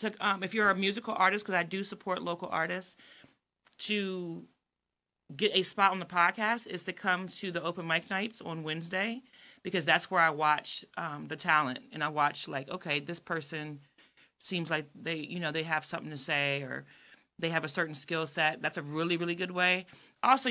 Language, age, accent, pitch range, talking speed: English, 30-49, American, 160-195 Hz, 200 wpm